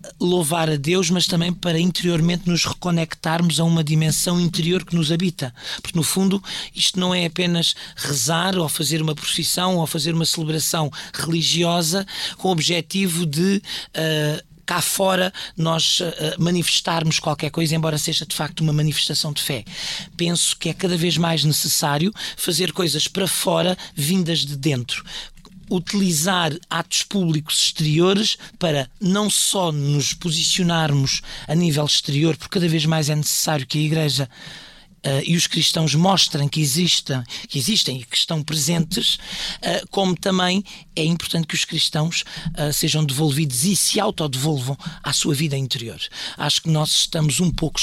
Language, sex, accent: Portuguese, male, Portuguese